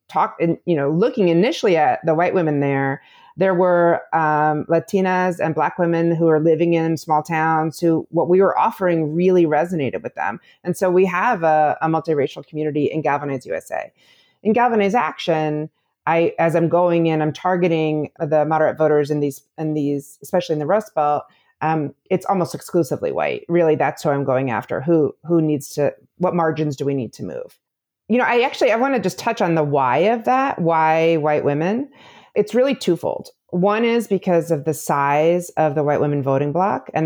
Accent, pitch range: American, 150-180 Hz